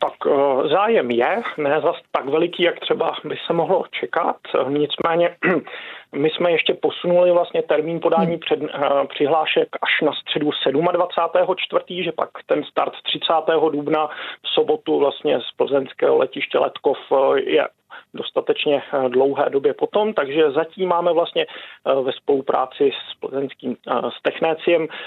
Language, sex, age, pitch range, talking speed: Czech, male, 40-59, 145-190 Hz, 135 wpm